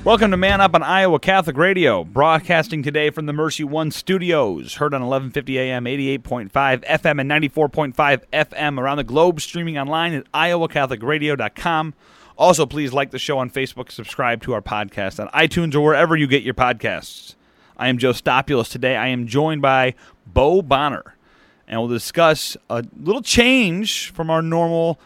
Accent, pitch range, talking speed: American, 105-155 Hz, 170 wpm